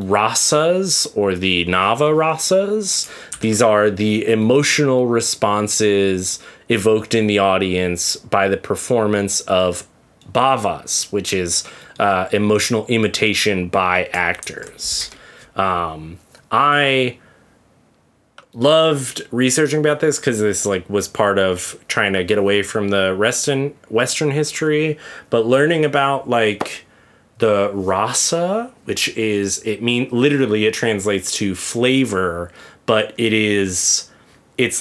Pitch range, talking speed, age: 95-125 Hz, 115 wpm, 30-49